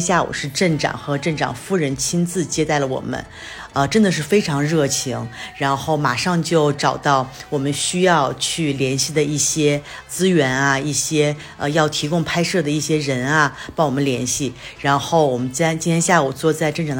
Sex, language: female, Chinese